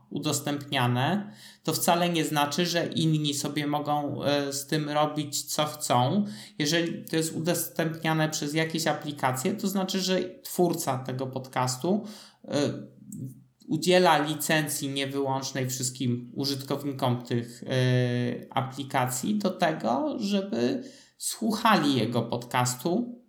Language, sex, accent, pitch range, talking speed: Polish, male, native, 130-155 Hz, 105 wpm